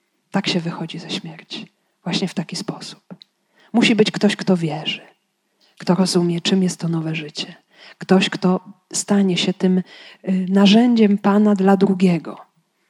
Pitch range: 180-210 Hz